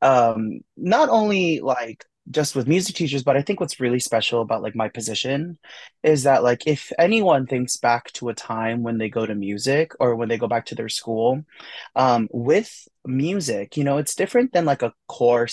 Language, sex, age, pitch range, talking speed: English, male, 20-39, 120-160 Hz, 200 wpm